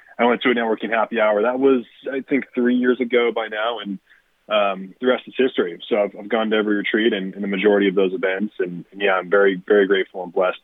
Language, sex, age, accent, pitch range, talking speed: English, male, 20-39, American, 95-110 Hz, 250 wpm